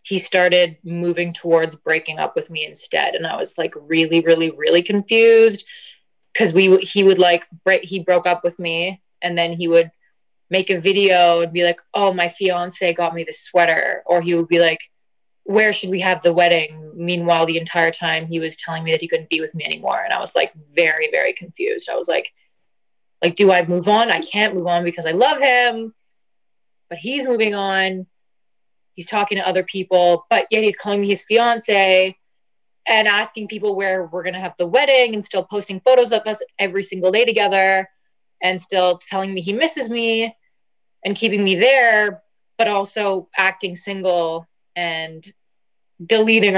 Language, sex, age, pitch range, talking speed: English, female, 20-39, 170-210 Hz, 190 wpm